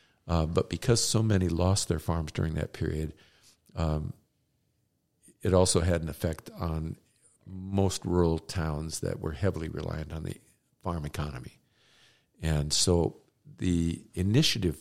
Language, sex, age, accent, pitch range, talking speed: English, male, 50-69, American, 80-105 Hz, 135 wpm